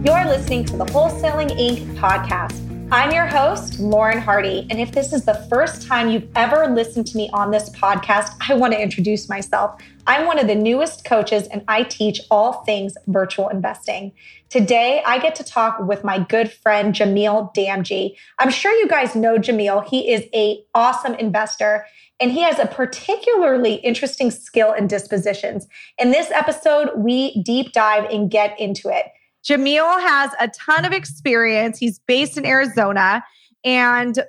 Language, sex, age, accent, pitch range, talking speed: English, female, 20-39, American, 215-260 Hz, 170 wpm